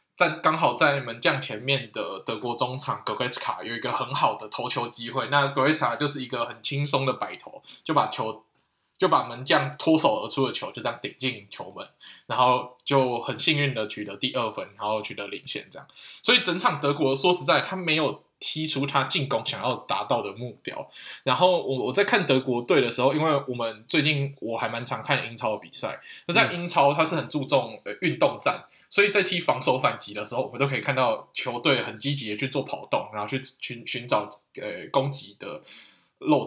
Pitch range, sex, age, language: 120-145 Hz, male, 20-39, Chinese